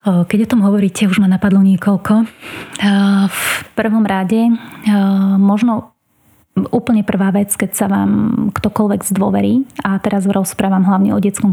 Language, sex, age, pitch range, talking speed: Slovak, female, 20-39, 195-215 Hz, 135 wpm